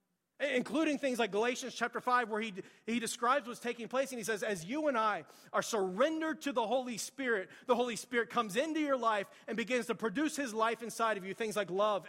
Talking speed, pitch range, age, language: 225 wpm, 215-280 Hz, 30-49, English